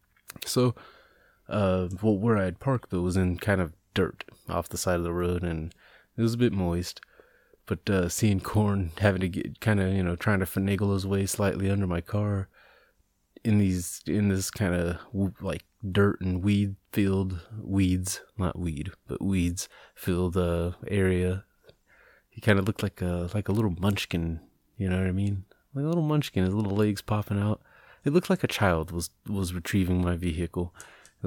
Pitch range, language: 90-105 Hz, English